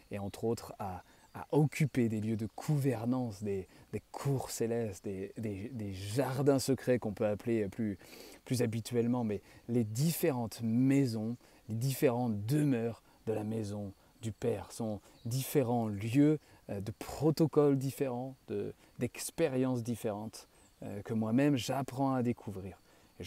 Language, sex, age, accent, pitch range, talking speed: French, male, 30-49, French, 105-130 Hz, 140 wpm